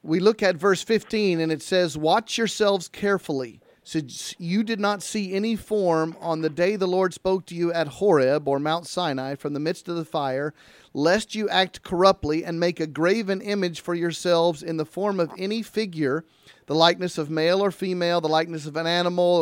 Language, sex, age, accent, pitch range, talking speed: English, male, 40-59, American, 160-195 Hz, 200 wpm